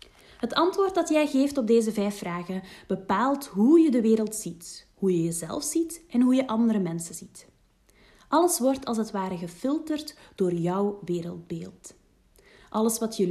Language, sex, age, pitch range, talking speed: Dutch, female, 30-49, 195-260 Hz, 165 wpm